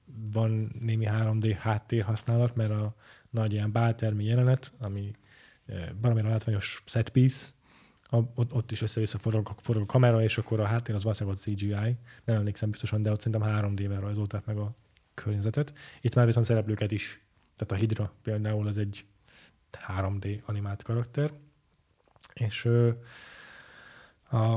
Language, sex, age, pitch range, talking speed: Hungarian, male, 10-29, 105-120 Hz, 140 wpm